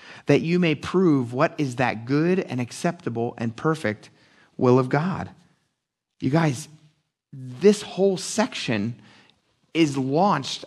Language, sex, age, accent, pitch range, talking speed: English, male, 30-49, American, 150-210 Hz, 125 wpm